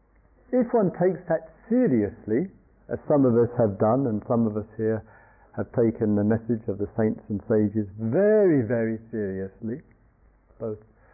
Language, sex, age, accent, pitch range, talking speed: English, male, 50-69, British, 110-155 Hz, 155 wpm